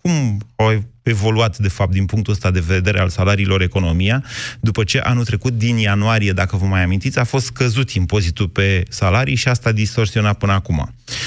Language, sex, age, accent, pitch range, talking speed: Romanian, male, 30-49, native, 100-120 Hz, 180 wpm